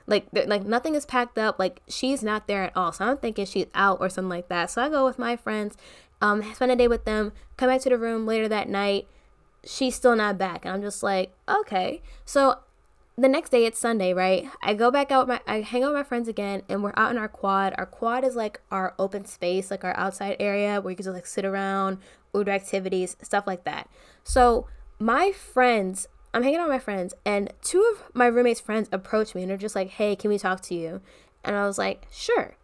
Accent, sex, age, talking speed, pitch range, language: American, female, 10-29, 240 wpm, 195-255 Hz, English